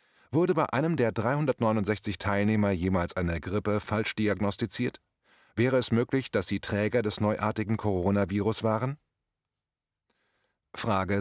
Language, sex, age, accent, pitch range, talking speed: German, male, 30-49, German, 95-125 Hz, 120 wpm